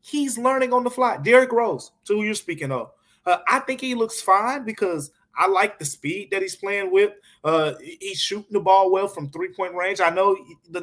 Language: English